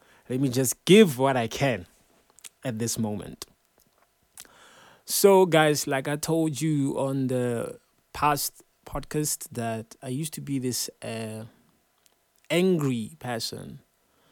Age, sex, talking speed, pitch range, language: 30-49, male, 120 wpm, 120-170 Hz, English